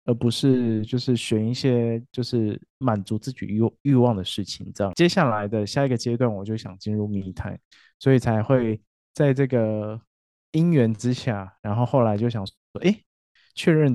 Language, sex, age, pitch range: Chinese, male, 20-39, 105-130 Hz